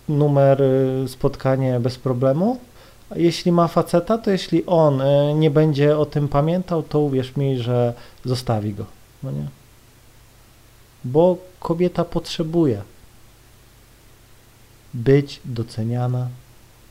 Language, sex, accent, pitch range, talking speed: Polish, male, native, 115-150 Hz, 105 wpm